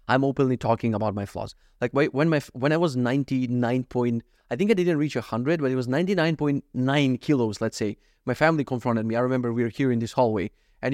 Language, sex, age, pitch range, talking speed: English, male, 30-49, 130-180 Hz, 220 wpm